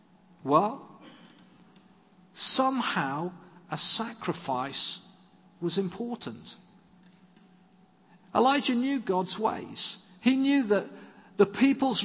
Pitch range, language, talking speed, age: 195-245 Hz, English, 75 wpm, 50-69